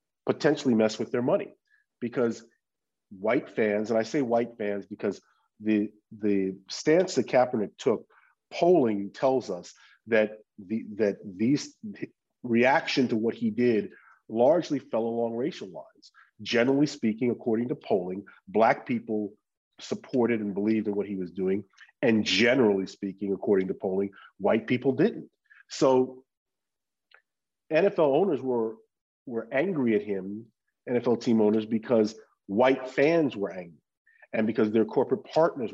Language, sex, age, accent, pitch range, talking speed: English, male, 40-59, American, 110-135 Hz, 140 wpm